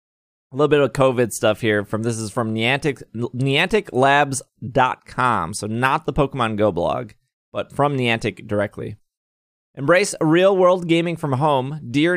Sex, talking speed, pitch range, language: male, 145 wpm, 120-160 Hz, English